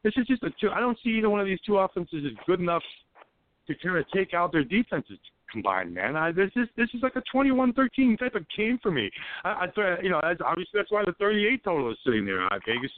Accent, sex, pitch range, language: American, male, 140-220 Hz, English